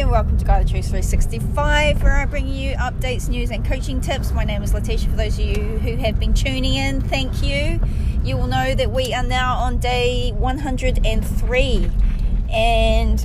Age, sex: 30-49, female